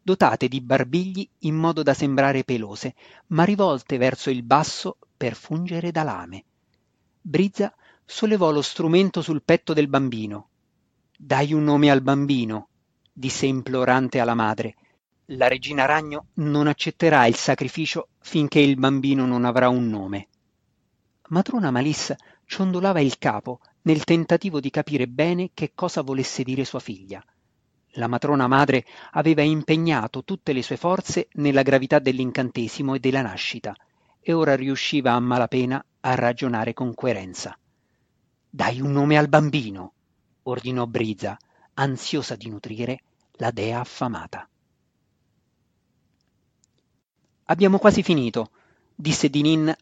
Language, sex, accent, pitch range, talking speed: Italian, male, native, 125-155 Hz, 130 wpm